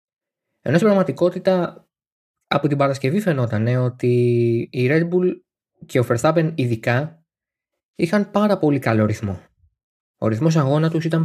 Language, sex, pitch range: Greek, male, 110-160 Hz